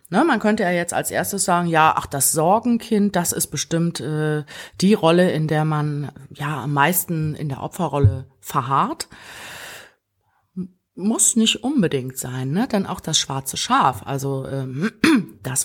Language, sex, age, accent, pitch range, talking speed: German, female, 30-49, German, 140-175 Hz, 155 wpm